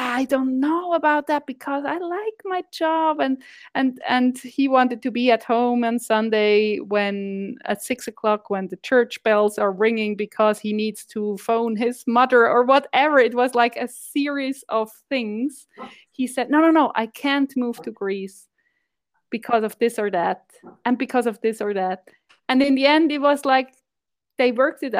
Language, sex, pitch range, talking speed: English, female, 215-280 Hz, 185 wpm